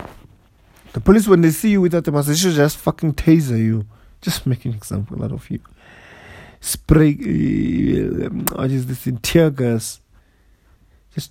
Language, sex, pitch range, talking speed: English, male, 110-160 Hz, 155 wpm